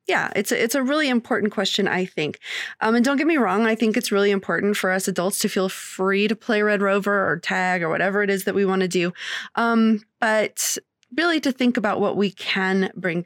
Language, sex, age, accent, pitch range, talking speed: English, female, 20-39, American, 195-245 Hz, 225 wpm